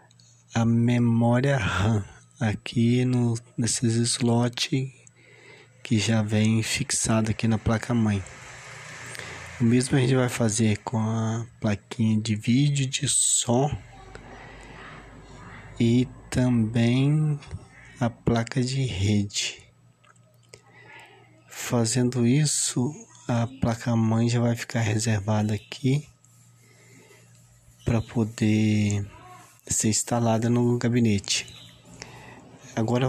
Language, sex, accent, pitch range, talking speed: Portuguese, male, Brazilian, 110-125 Hz, 85 wpm